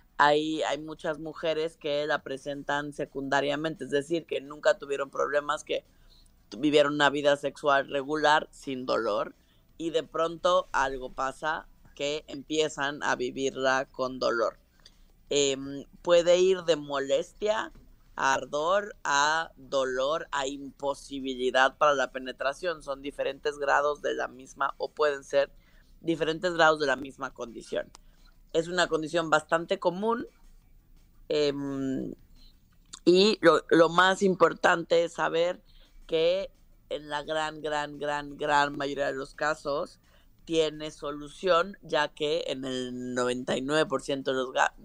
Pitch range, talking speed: 135-155 Hz, 125 wpm